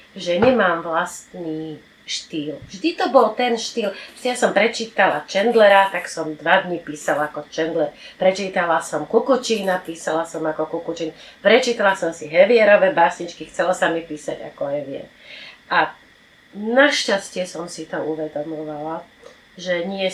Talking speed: 140 wpm